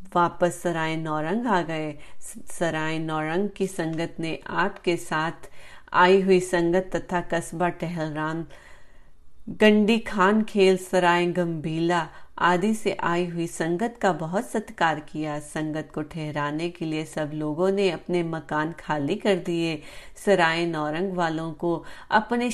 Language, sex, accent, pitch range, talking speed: Hindi, female, native, 155-190 Hz, 135 wpm